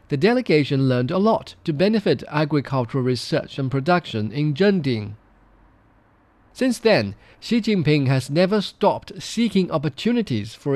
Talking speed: 130 wpm